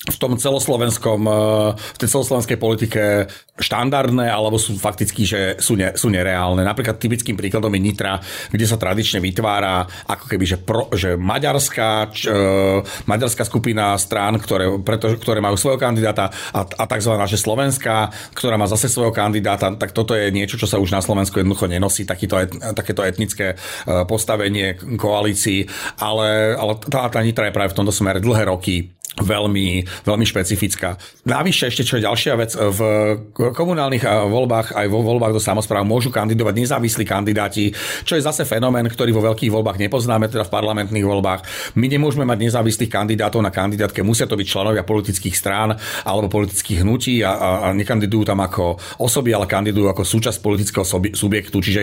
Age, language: 40-59, Slovak